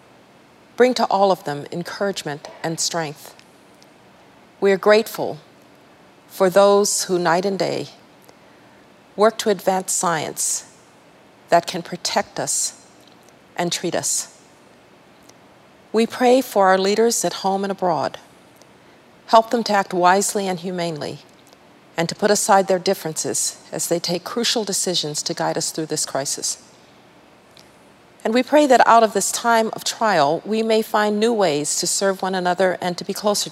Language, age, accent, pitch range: English, 40-59, American, 170-210 Hz